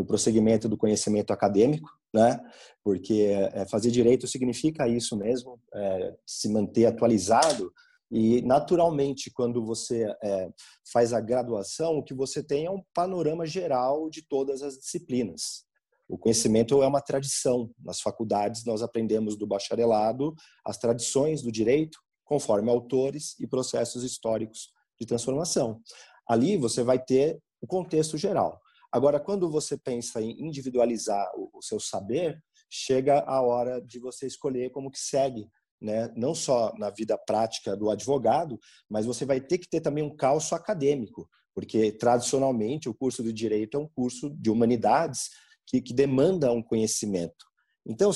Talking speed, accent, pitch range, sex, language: 145 wpm, Brazilian, 115-145 Hz, male, Portuguese